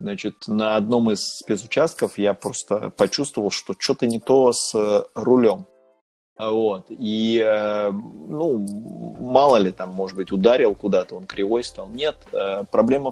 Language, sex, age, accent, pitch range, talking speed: Russian, male, 30-49, native, 100-125 Hz, 135 wpm